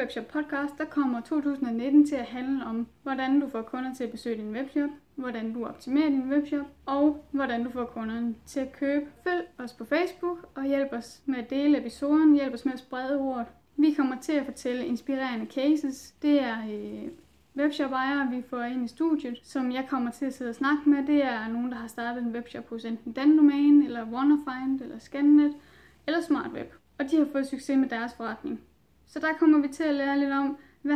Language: Danish